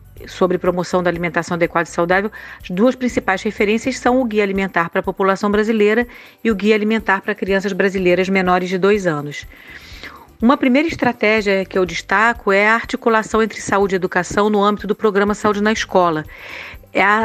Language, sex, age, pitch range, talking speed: Portuguese, female, 40-59, 185-225 Hz, 175 wpm